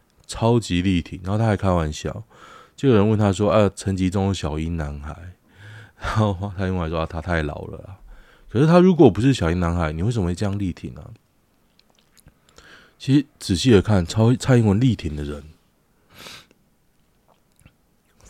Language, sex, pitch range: Chinese, male, 80-105 Hz